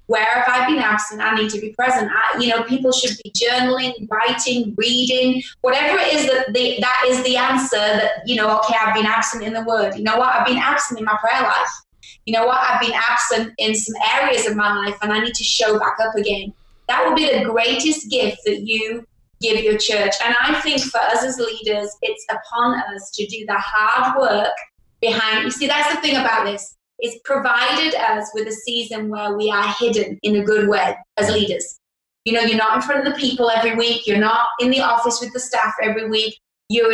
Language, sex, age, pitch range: English, female, 20-39, 210-245 Hz